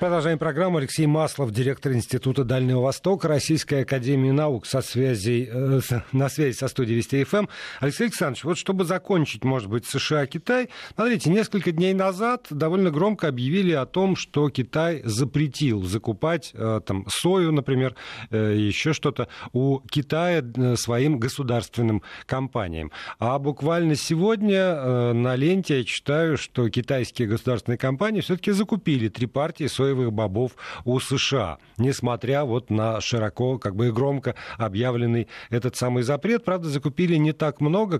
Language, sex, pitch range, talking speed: Russian, male, 120-160 Hz, 135 wpm